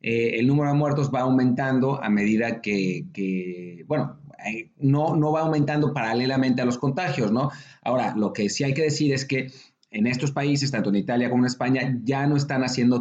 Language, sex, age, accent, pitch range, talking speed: English, male, 40-59, Mexican, 120-150 Hz, 205 wpm